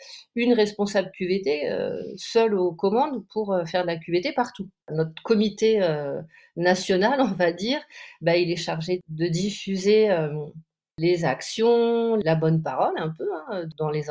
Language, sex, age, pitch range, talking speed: French, female, 40-59, 170-230 Hz, 135 wpm